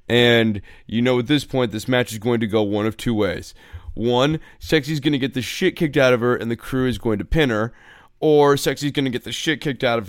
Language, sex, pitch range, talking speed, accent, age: English, male, 105-130 Hz, 270 wpm, American, 20-39